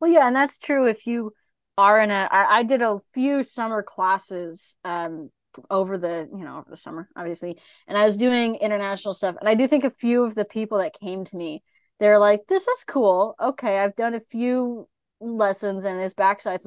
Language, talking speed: English, 210 wpm